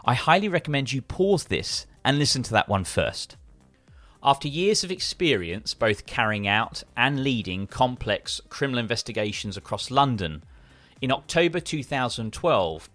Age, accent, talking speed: 30-49, British, 135 wpm